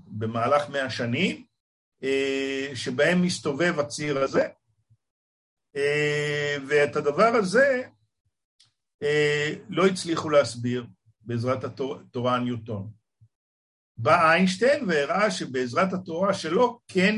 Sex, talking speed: male, 80 wpm